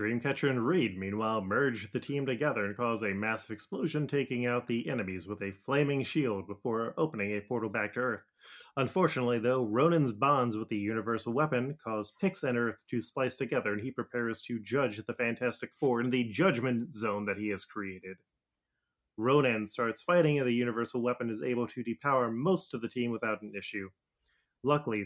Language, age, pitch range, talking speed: English, 30-49, 110-130 Hz, 185 wpm